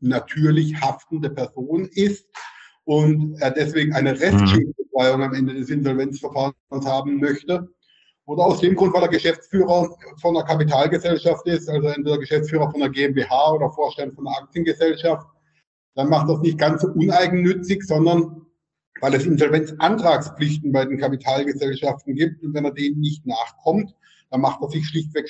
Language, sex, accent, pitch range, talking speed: German, male, German, 135-165 Hz, 150 wpm